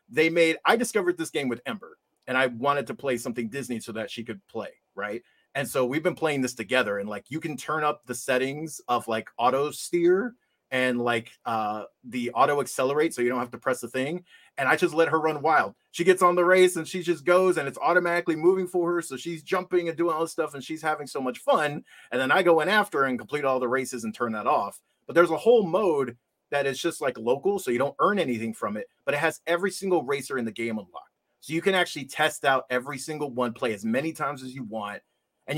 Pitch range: 125-175 Hz